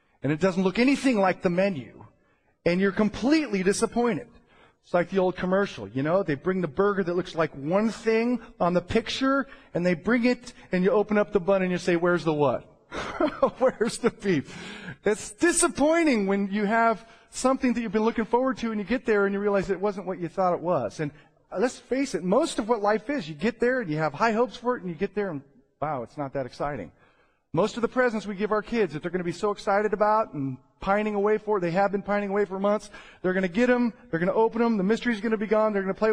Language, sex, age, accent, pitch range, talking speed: English, male, 40-59, American, 185-240 Hz, 255 wpm